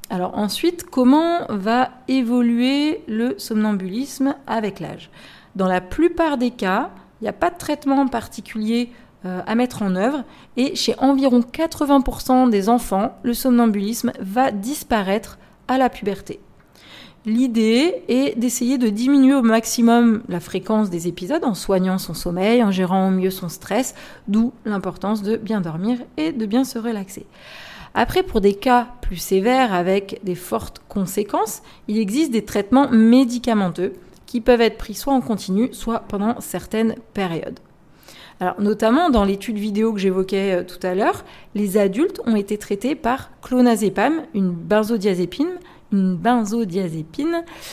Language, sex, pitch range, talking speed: French, female, 195-255 Hz, 145 wpm